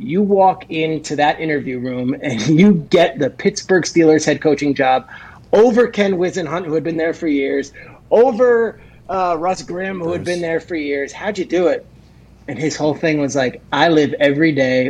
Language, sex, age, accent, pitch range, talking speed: English, male, 30-49, American, 145-180 Hz, 195 wpm